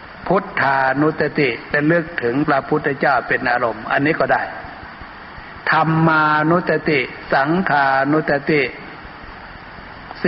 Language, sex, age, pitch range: Thai, male, 60-79, 135-165 Hz